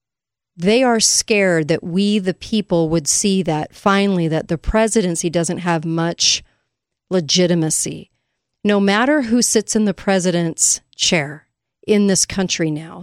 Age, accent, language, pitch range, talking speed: 40-59, American, English, 160-200 Hz, 140 wpm